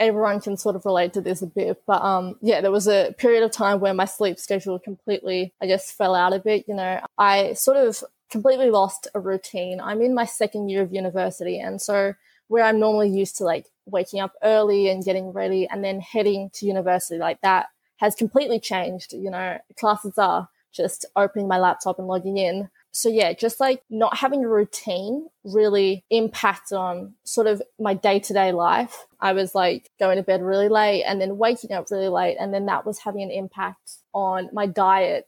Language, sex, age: English, female, 20-39